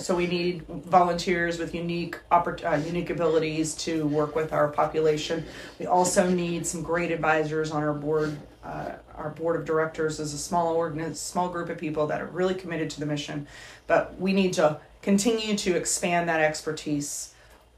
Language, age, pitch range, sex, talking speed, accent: English, 30-49, 155-185 Hz, female, 160 wpm, American